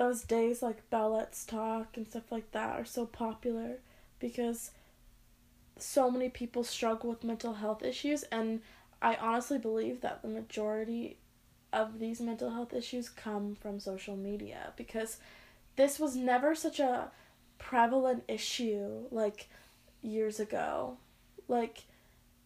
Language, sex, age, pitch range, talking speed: English, female, 20-39, 220-255 Hz, 130 wpm